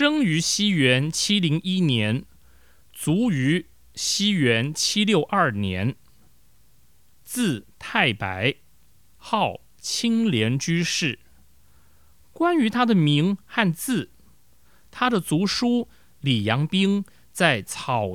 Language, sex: Chinese, male